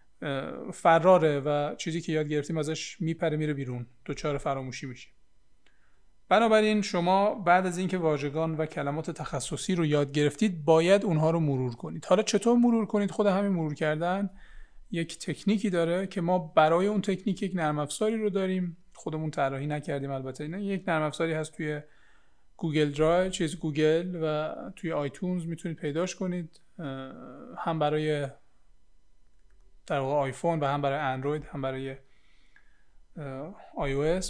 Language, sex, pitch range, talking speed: Persian, male, 145-180 Hz, 145 wpm